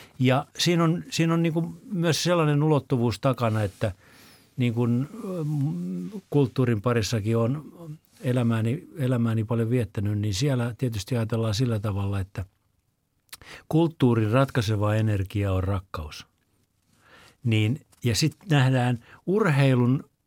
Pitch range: 110-150 Hz